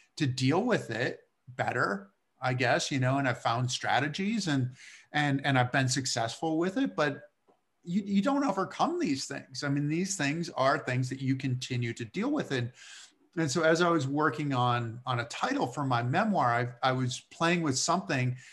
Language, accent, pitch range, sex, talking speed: English, American, 125-155 Hz, male, 195 wpm